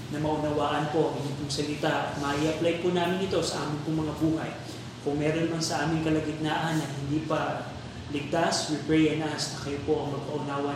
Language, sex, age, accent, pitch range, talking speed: Filipino, male, 20-39, native, 145-195 Hz, 190 wpm